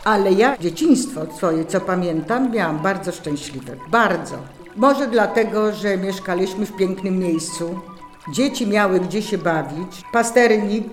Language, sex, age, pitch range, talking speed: Polish, female, 50-69, 175-230 Hz, 125 wpm